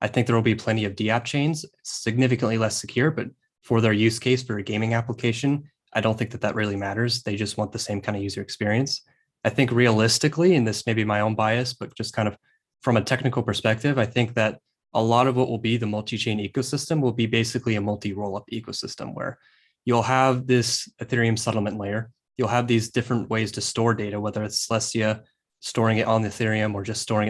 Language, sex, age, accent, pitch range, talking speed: English, male, 20-39, American, 105-120 Hz, 220 wpm